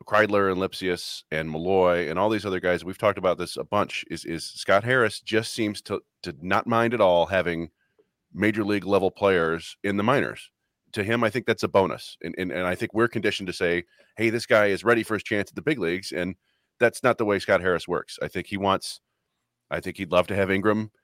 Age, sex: 30-49, male